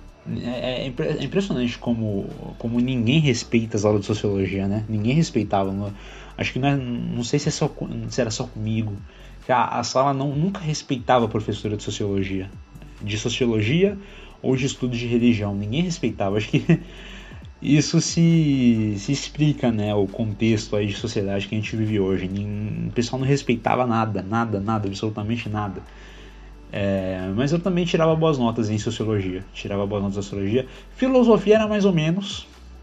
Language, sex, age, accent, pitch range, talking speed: Portuguese, male, 20-39, Brazilian, 105-140 Hz, 170 wpm